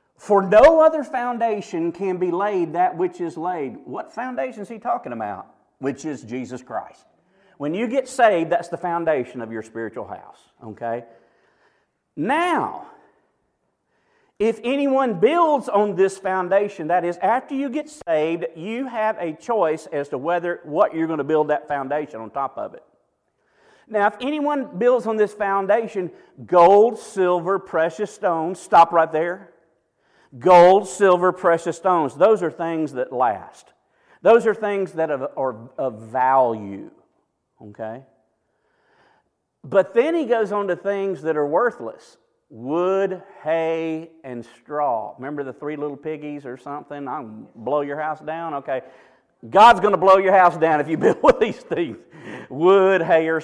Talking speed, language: 155 wpm, English